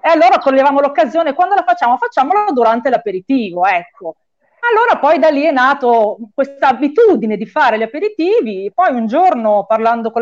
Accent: native